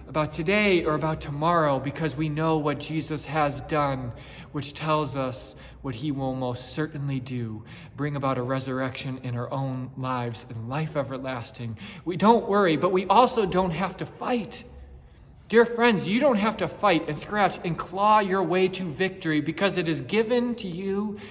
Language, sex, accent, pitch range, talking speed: English, male, American, 140-190 Hz, 175 wpm